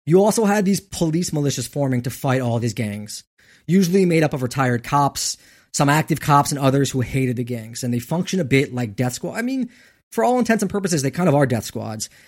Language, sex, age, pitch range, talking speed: English, male, 20-39, 125-170 Hz, 235 wpm